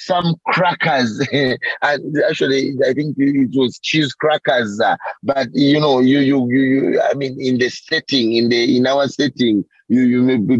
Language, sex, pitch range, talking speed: English, male, 130-155 Hz, 170 wpm